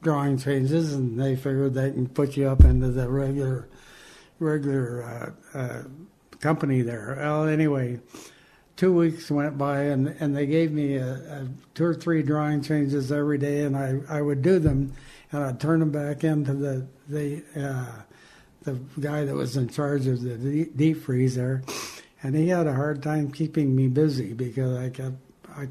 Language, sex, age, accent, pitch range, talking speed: English, male, 60-79, American, 135-155 Hz, 180 wpm